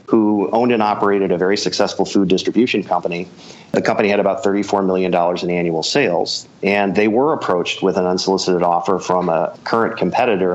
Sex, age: male, 40-59